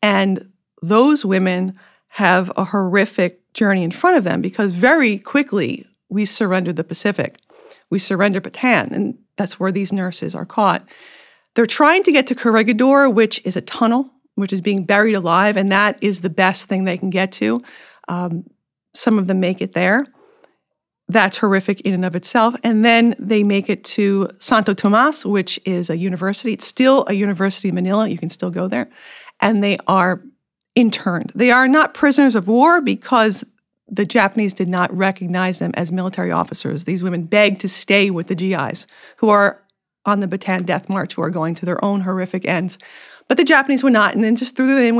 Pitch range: 185-230 Hz